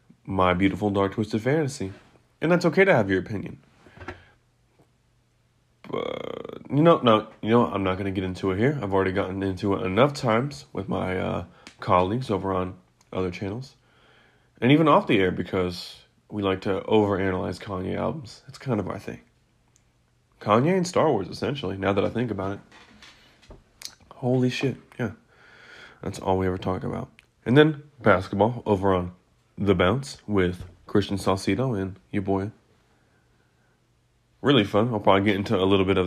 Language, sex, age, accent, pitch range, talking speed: English, male, 30-49, American, 95-120 Hz, 170 wpm